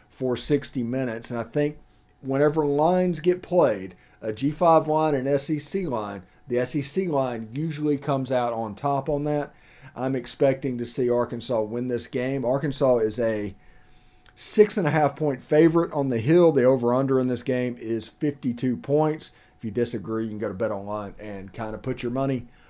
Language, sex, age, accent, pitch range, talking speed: English, male, 40-59, American, 115-145 Hz, 190 wpm